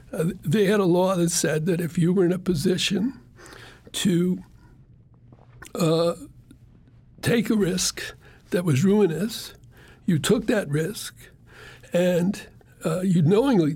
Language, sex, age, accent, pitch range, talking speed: English, male, 60-79, American, 170-210 Hz, 130 wpm